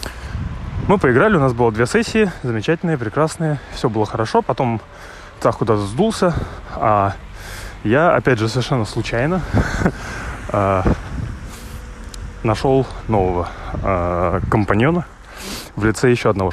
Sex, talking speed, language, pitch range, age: male, 105 wpm, Russian, 95-120 Hz, 20-39